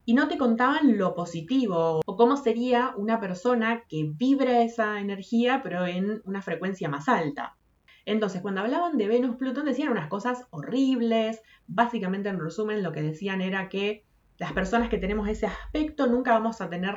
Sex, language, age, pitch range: female, Spanish, 20-39, 175-235 Hz